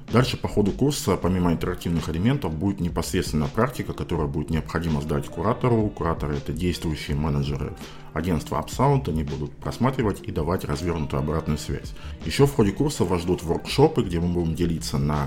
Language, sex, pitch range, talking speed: Russian, male, 75-95 Hz, 160 wpm